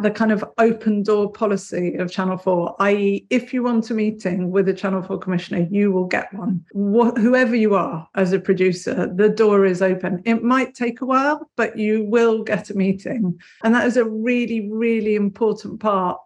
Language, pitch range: English, 185-220 Hz